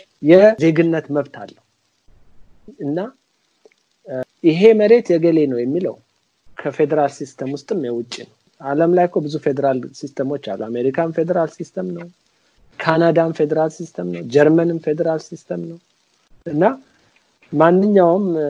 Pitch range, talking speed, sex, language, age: 135-190 Hz, 115 wpm, male, Amharic, 50-69